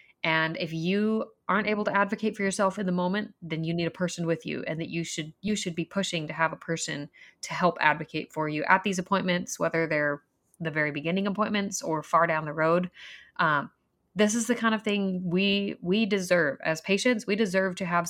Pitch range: 160-190 Hz